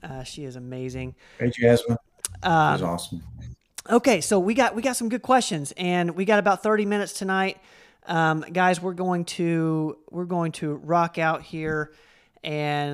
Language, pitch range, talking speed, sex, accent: English, 150-185 Hz, 165 wpm, male, American